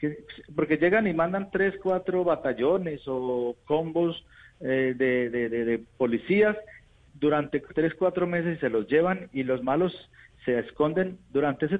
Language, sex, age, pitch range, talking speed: Spanish, male, 50-69, 130-175 Hz, 145 wpm